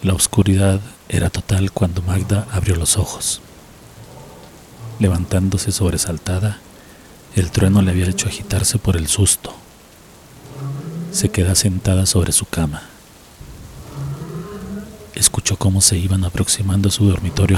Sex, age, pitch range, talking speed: male, 40-59, 90-100 Hz, 115 wpm